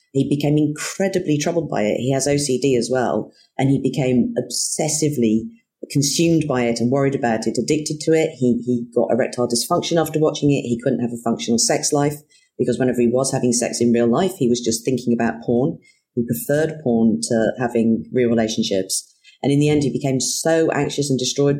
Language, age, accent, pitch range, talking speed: English, 40-59, British, 120-150 Hz, 200 wpm